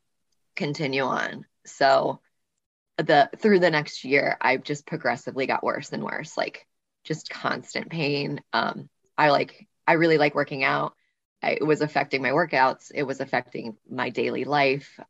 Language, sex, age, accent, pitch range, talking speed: English, female, 20-39, American, 140-180 Hz, 155 wpm